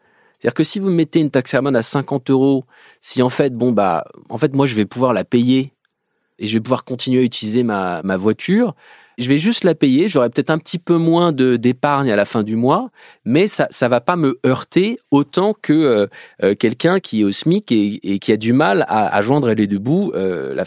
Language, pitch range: French, 115-160 Hz